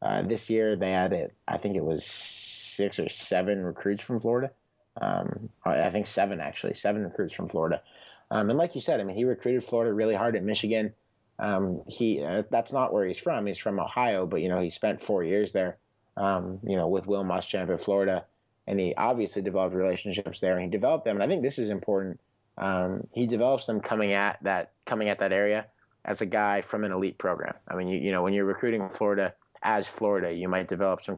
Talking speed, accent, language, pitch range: 220 wpm, American, English, 95-105 Hz